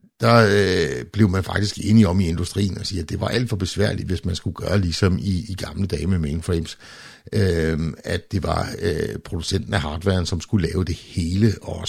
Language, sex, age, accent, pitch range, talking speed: Danish, male, 60-79, native, 85-105 Hz, 210 wpm